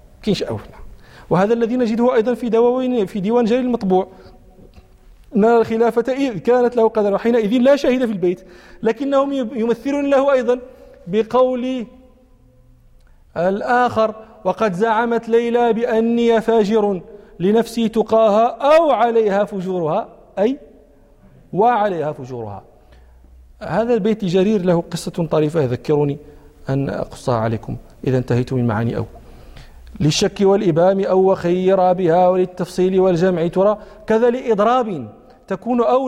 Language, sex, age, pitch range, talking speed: Arabic, male, 40-59, 190-245 Hz, 110 wpm